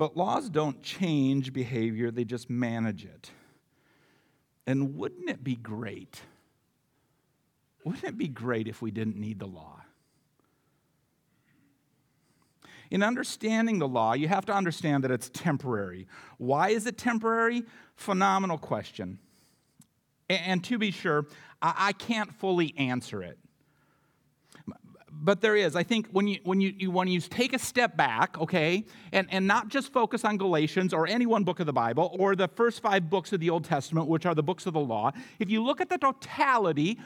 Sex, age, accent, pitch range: male, 50-69, American, 145-195 Hz